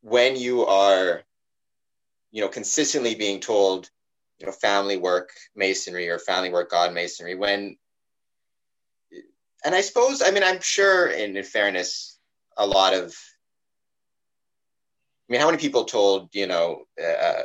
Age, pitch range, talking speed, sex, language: 30-49, 90-125 Hz, 140 wpm, male, English